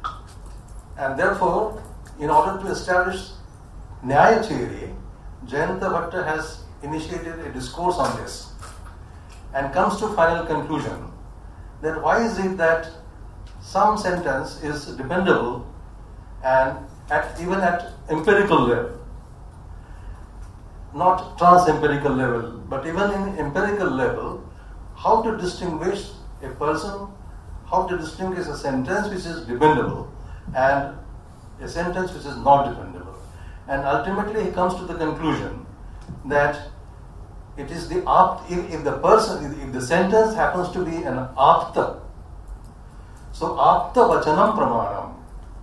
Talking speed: 120 wpm